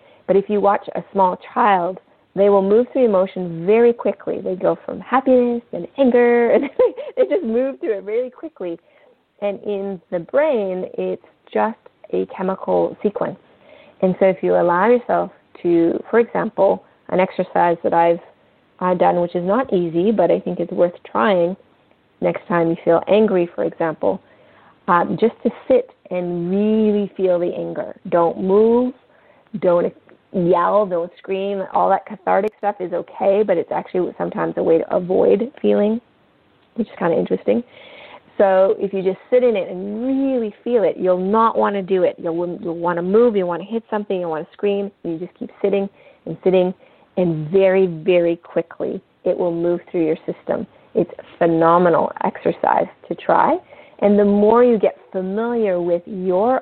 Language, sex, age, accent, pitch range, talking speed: English, female, 30-49, American, 175-230 Hz, 175 wpm